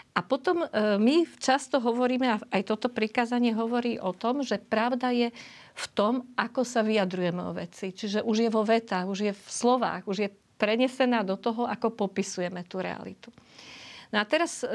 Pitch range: 205-245 Hz